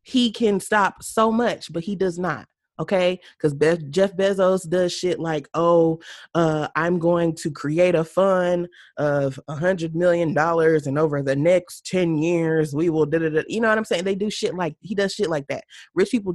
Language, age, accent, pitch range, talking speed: English, 20-39, American, 170-225 Hz, 205 wpm